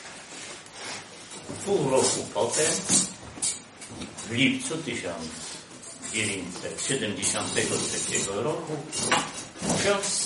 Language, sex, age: English, male, 50-69